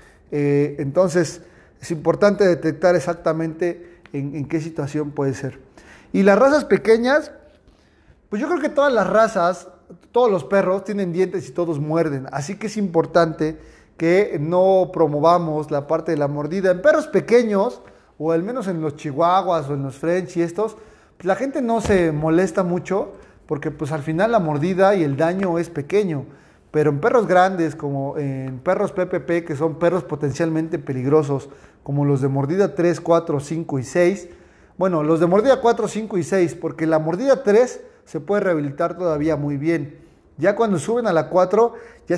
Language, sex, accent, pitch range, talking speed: Spanish, male, Mexican, 150-190 Hz, 175 wpm